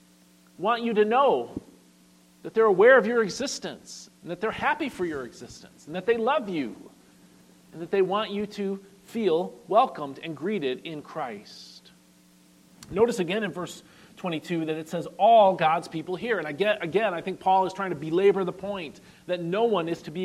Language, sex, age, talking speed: English, male, 40-59, 185 wpm